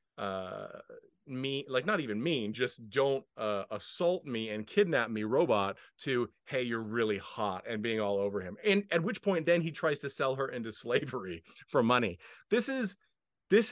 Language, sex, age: English, male, 30-49